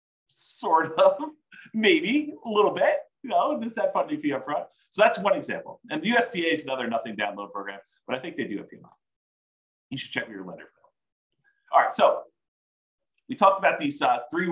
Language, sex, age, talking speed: English, male, 40-59, 195 wpm